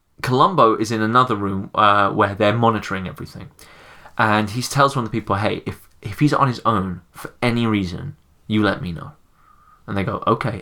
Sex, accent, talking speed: male, British, 200 wpm